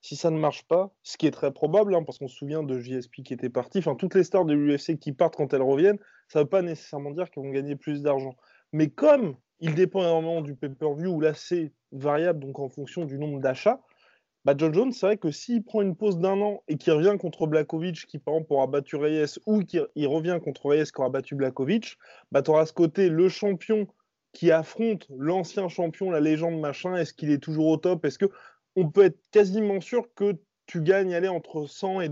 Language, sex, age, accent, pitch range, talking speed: French, male, 20-39, French, 150-185 Hz, 235 wpm